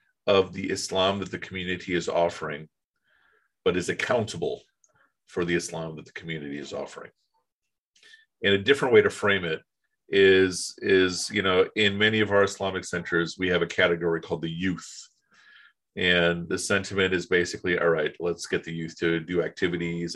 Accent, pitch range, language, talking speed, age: American, 85-110 Hz, English, 170 wpm, 40-59